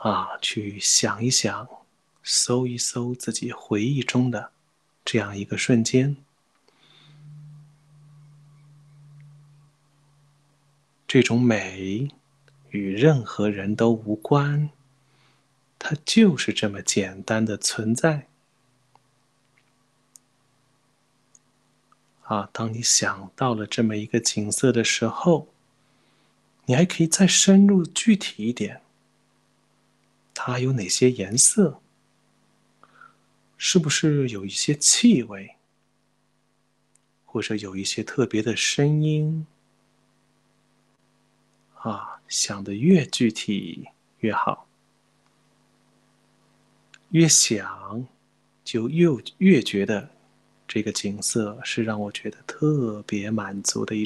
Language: Chinese